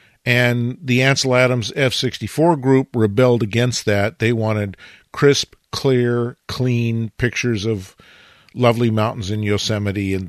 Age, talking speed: 50-69, 120 wpm